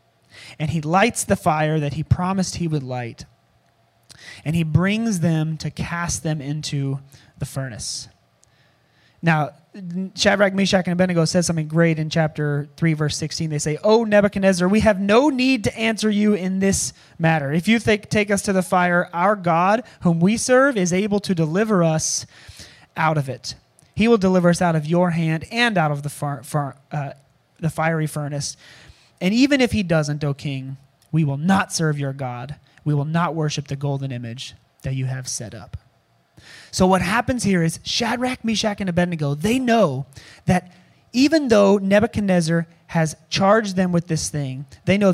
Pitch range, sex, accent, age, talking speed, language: 145-195 Hz, male, American, 30-49, 175 wpm, English